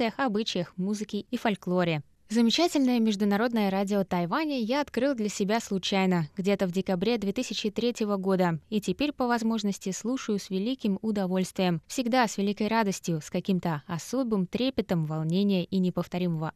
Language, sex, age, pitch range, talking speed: Russian, female, 20-39, 185-235 Hz, 135 wpm